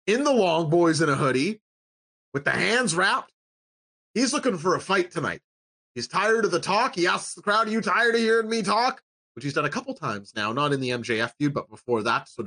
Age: 30-49